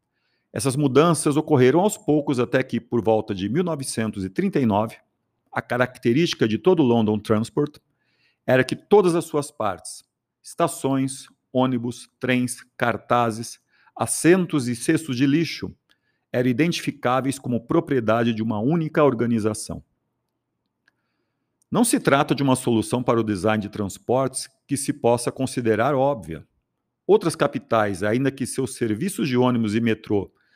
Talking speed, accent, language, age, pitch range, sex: 130 wpm, Brazilian, Portuguese, 50-69, 110-135 Hz, male